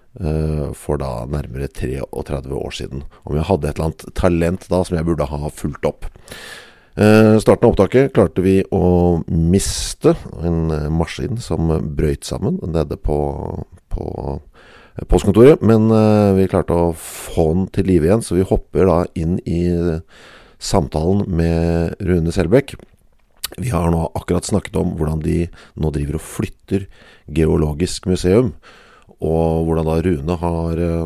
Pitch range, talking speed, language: 80-95 Hz, 140 wpm, English